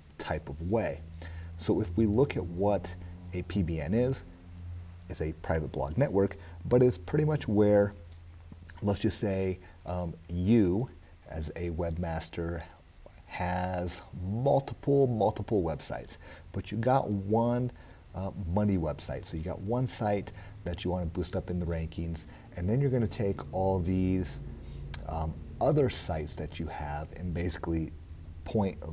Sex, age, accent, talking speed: male, 30-49, American, 145 wpm